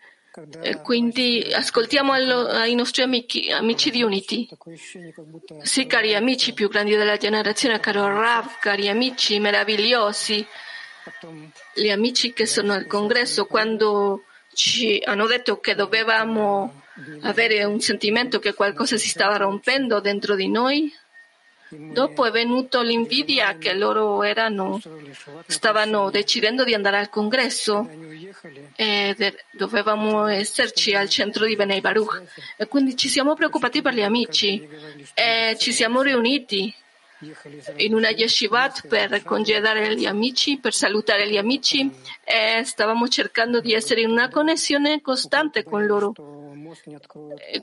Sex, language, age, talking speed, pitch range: female, Italian, 40-59, 125 wpm, 205-245 Hz